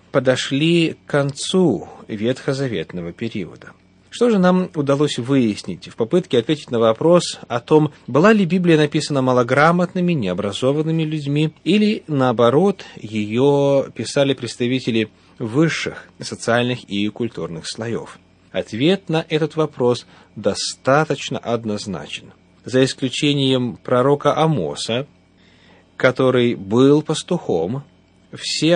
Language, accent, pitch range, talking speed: Russian, native, 115-155 Hz, 100 wpm